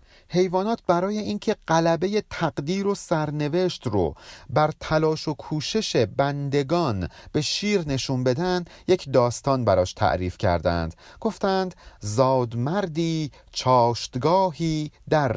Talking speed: 105 wpm